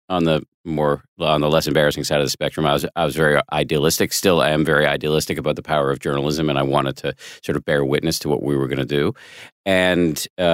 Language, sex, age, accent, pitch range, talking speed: English, male, 40-59, American, 70-85 Hz, 250 wpm